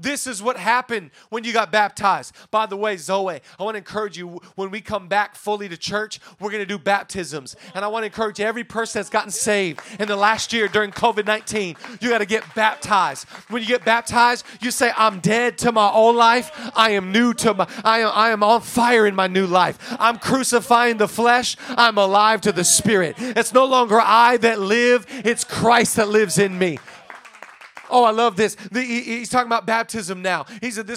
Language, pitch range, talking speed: English, 160-235 Hz, 215 wpm